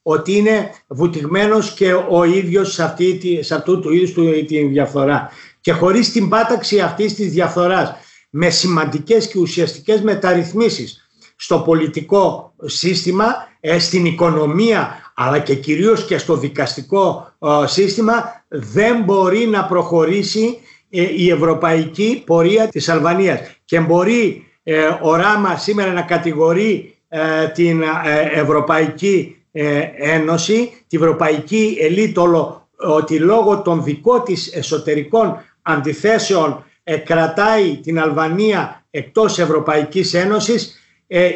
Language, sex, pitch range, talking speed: Greek, male, 160-205 Hz, 110 wpm